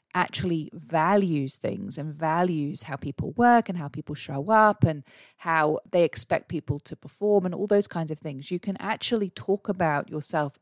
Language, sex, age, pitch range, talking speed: English, female, 30-49, 150-185 Hz, 180 wpm